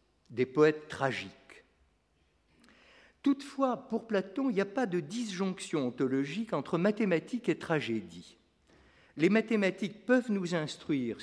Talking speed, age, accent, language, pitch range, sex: 120 wpm, 50-69, French, French, 120-200 Hz, male